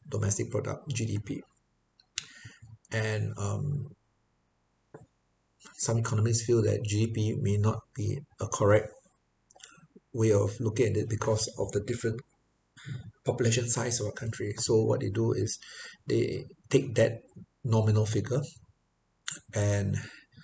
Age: 50-69